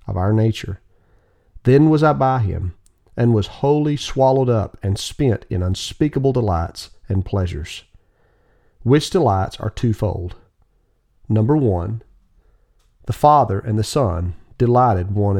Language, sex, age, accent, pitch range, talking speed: English, male, 40-59, American, 95-120 Hz, 130 wpm